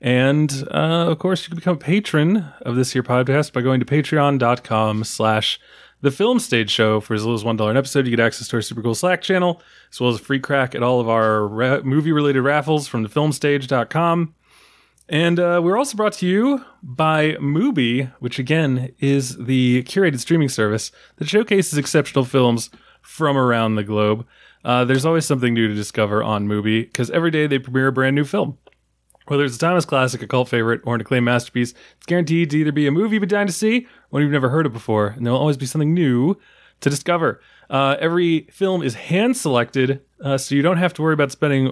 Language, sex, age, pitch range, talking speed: English, male, 20-39, 120-155 Hz, 220 wpm